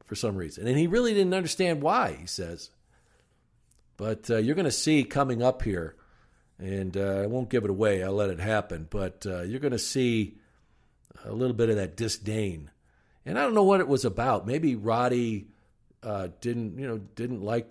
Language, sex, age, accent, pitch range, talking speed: English, male, 50-69, American, 95-120 Hz, 200 wpm